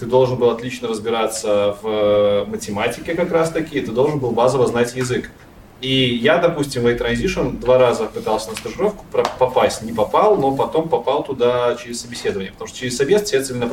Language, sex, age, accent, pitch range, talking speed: Russian, male, 20-39, native, 110-155 Hz, 170 wpm